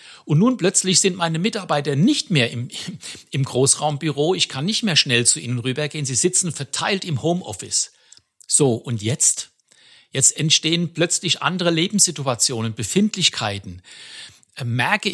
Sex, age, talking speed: male, 60-79, 135 wpm